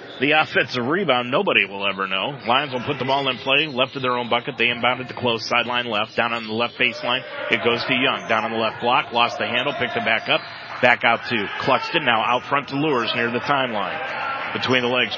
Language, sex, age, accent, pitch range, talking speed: English, male, 40-59, American, 125-170 Hz, 240 wpm